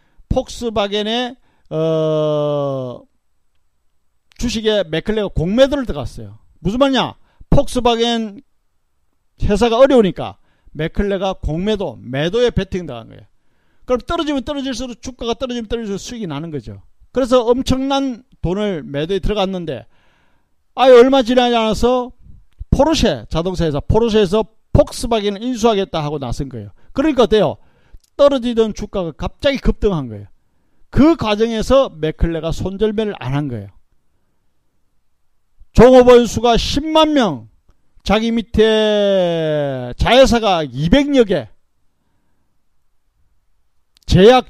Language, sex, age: Korean, male, 40-59